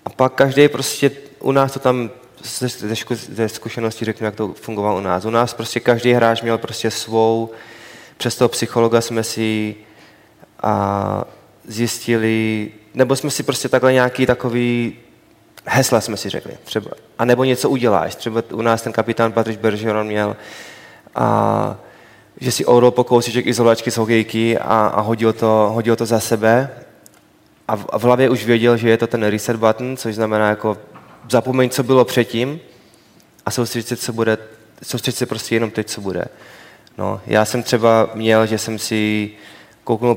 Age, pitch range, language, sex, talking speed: 20-39, 110-125 Hz, Czech, male, 165 wpm